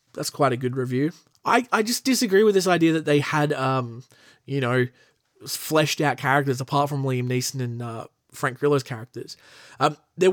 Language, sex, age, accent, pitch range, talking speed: English, male, 20-39, Australian, 130-155 Hz, 185 wpm